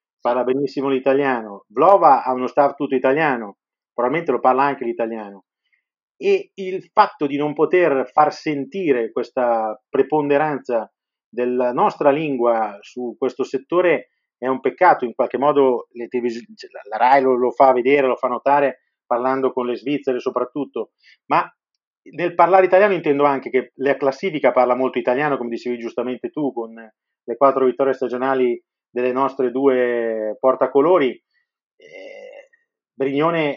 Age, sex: 40-59, male